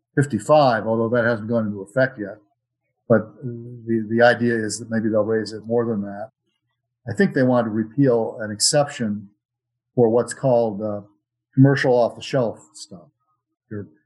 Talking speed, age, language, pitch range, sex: 165 wpm, 40-59, English, 110-125 Hz, male